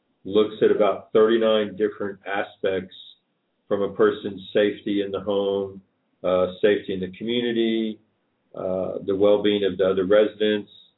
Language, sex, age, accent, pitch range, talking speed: English, male, 50-69, American, 95-110 Hz, 135 wpm